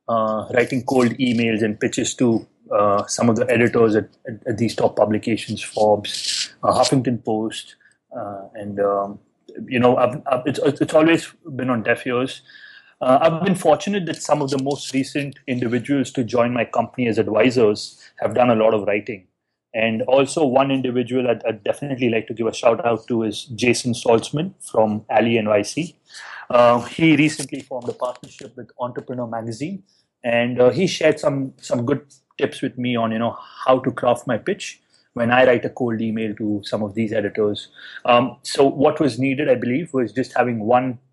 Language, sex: English, male